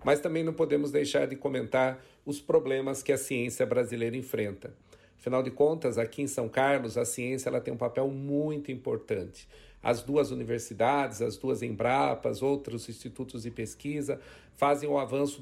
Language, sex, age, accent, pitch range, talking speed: Portuguese, male, 50-69, Brazilian, 120-145 Hz, 160 wpm